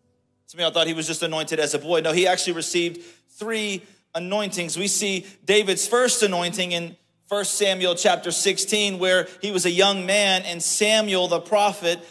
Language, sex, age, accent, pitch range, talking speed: English, male, 40-59, American, 170-215 Hz, 185 wpm